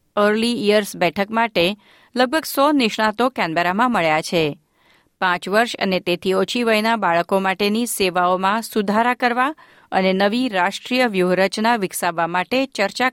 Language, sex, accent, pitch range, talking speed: Gujarati, female, native, 185-235 Hz, 95 wpm